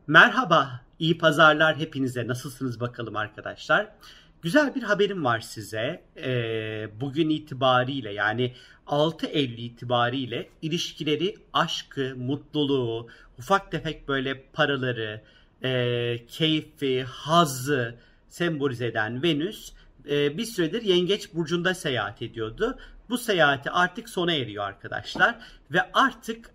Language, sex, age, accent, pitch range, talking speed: Turkish, male, 50-69, native, 130-170 Hz, 95 wpm